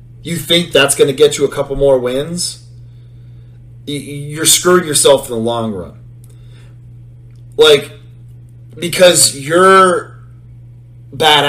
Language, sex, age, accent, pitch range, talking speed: English, male, 30-49, American, 120-170 Hz, 110 wpm